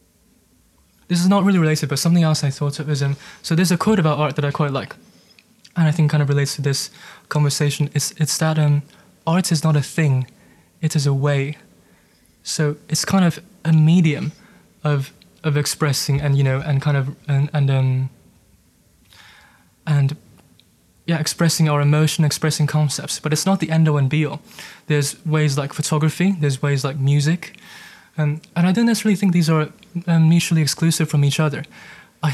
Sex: male